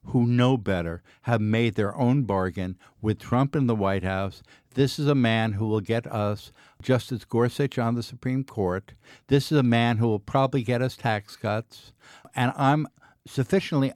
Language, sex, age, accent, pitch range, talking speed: English, male, 60-79, American, 110-140 Hz, 180 wpm